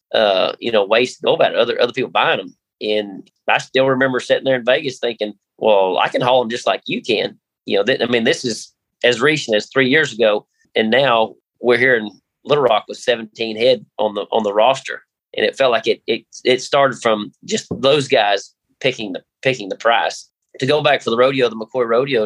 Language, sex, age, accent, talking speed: English, male, 30-49, American, 230 wpm